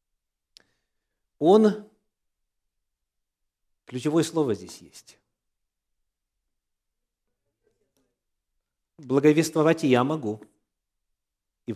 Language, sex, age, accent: Russian, male, 40-59, native